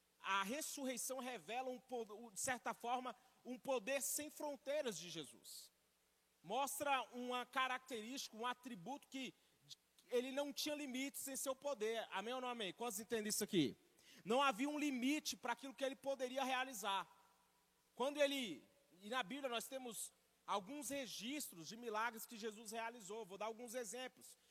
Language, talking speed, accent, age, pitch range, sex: Portuguese, 150 wpm, Brazilian, 40-59, 225-270 Hz, male